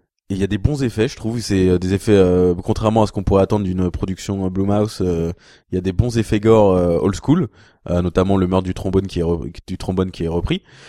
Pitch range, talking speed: 90-105 Hz, 260 wpm